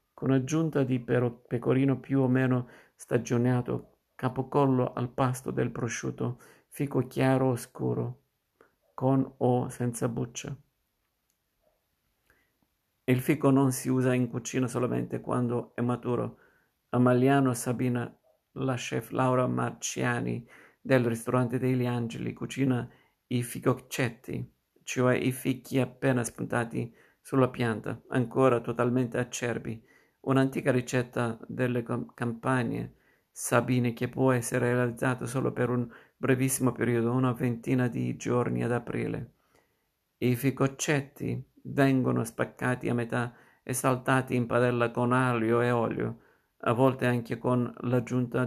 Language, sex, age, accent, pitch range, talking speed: Italian, male, 50-69, native, 120-130 Hz, 115 wpm